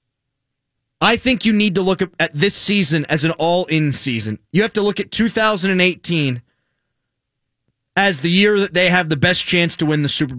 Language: English